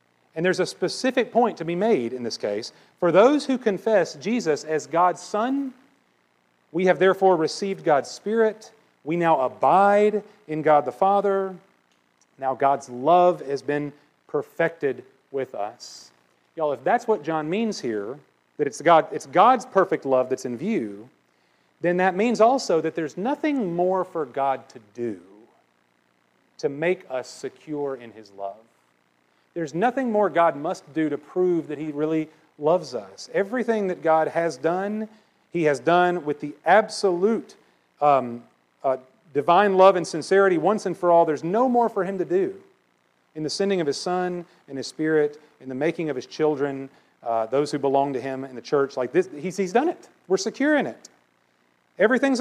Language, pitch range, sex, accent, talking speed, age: English, 140-210 Hz, male, American, 175 wpm, 40-59